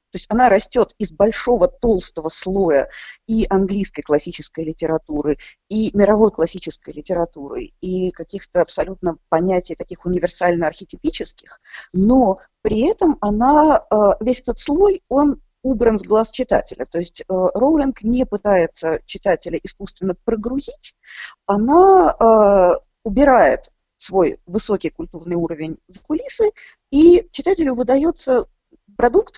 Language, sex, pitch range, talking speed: Russian, female, 185-260 Hz, 105 wpm